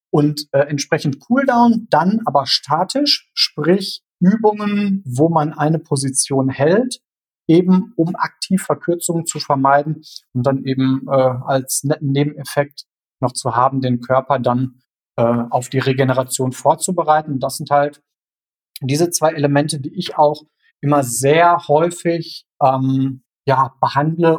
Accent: German